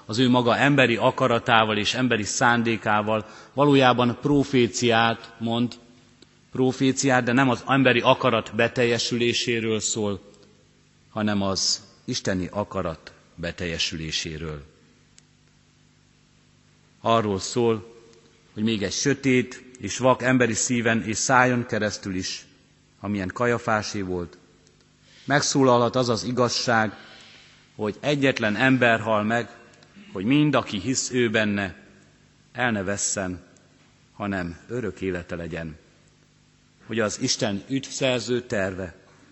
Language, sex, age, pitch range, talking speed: Hungarian, male, 30-49, 100-125 Hz, 100 wpm